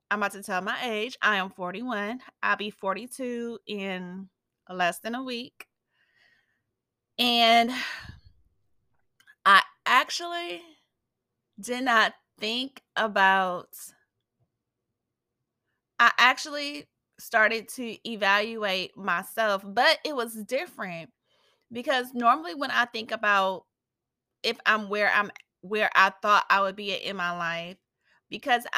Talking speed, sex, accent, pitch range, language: 115 wpm, female, American, 190-235 Hz, English